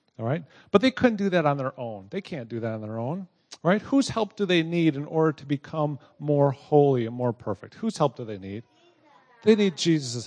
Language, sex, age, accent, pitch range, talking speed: English, male, 40-59, American, 140-195 Hz, 230 wpm